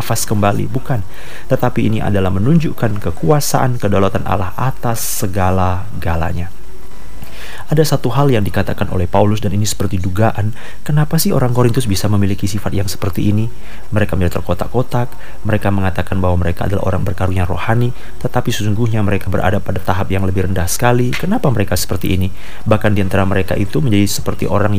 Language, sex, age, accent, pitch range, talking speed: Indonesian, male, 30-49, native, 100-130 Hz, 155 wpm